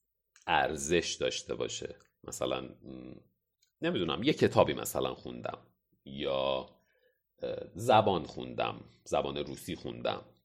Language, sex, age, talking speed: Persian, male, 40-59, 85 wpm